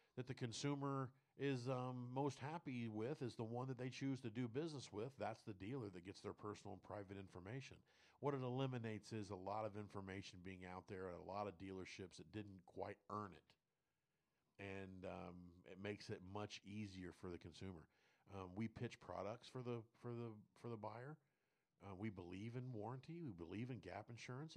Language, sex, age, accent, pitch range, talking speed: English, male, 50-69, American, 100-130 Hz, 195 wpm